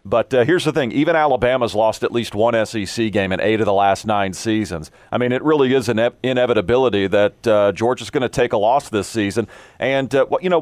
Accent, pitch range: American, 105-135 Hz